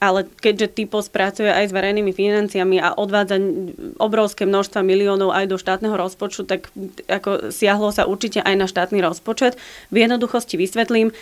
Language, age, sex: Slovak, 20-39, female